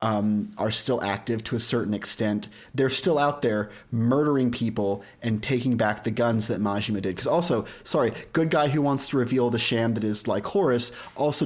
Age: 30-49